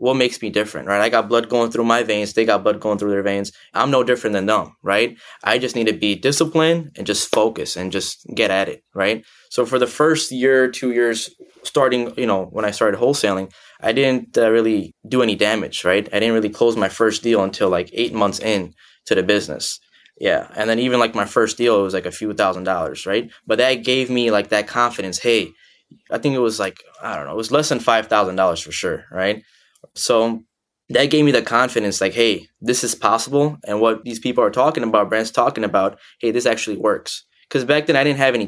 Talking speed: 230 wpm